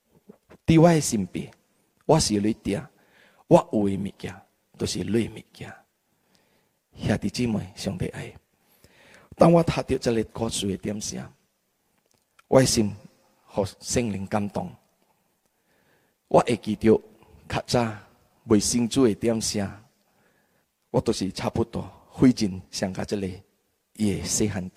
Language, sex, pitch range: Indonesian, male, 105-165 Hz